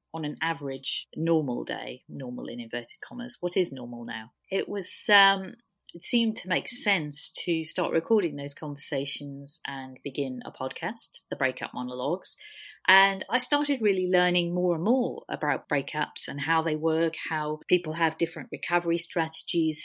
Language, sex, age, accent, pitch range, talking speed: English, female, 40-59, British, 150-190 Hz, 160 wpm